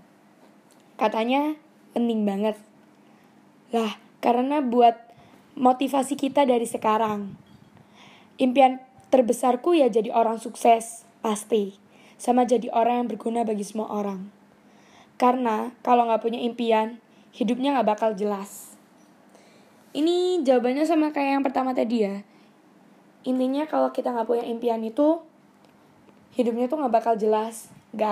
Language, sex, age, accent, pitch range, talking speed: Indonesian, female, 20-39, native, 220-255 Hz, 115 wpm